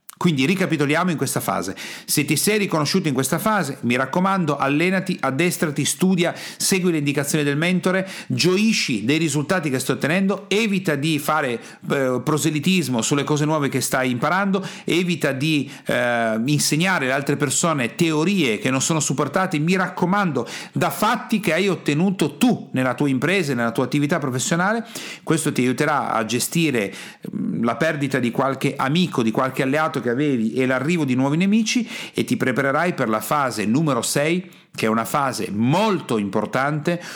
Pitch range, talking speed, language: 120-170 Hz, 160 wpm, Italian